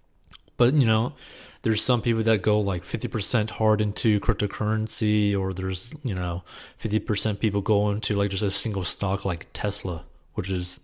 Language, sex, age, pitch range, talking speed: English, male, 30-49, 100-125 Hz, 165 wpm